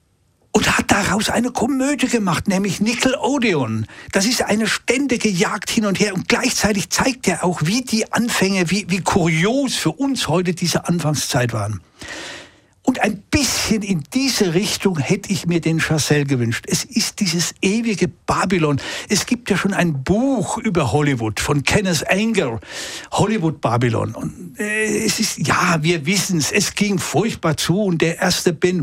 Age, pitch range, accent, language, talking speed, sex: 60-79, 145-200 Hz, German, German, 160 wpm, male